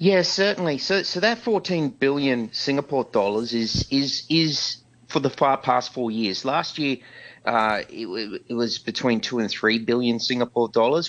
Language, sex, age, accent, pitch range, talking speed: English, male, 30-49, Australian, 110-135 Hz, 170 wpm